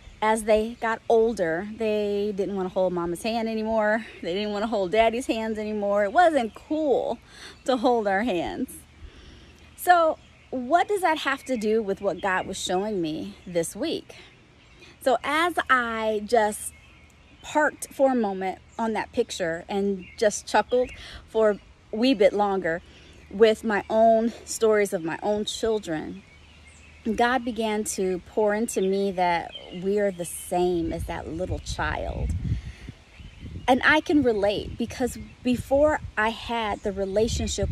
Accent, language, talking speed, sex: American, English, 145 wpm, female